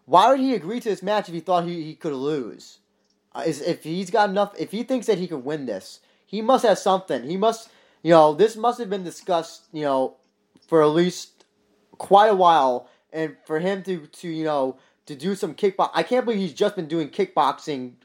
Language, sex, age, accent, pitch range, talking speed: English, male, 20-39, American, 140-185 Hz, 225 wpm